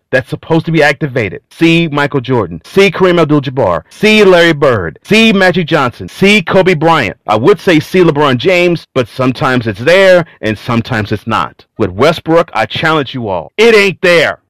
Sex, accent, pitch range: male, American, 95-150 Hz